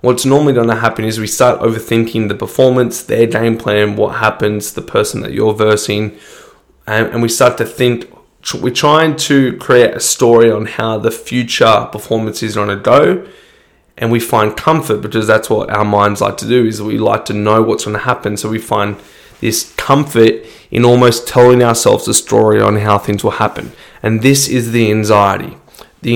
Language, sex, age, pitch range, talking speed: English, male, 20-39, 105-130 Hz, 195 wpm